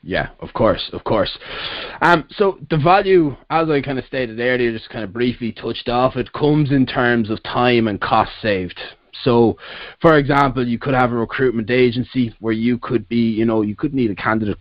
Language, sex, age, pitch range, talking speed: English, male, 20-39, 110-125 Hz, 205 wpm